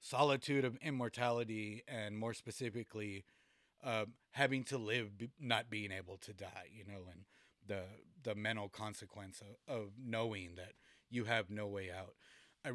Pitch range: 110-130 Hz